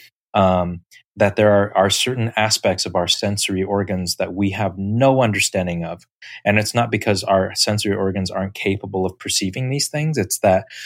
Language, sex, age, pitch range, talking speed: English, male, 20-39, 95-105 Hz, 175 wpm